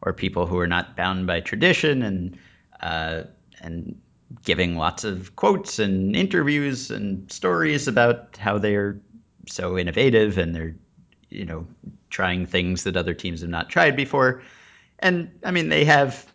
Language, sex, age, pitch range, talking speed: English, male, 30-49, 90-115 Hz, 155 wpm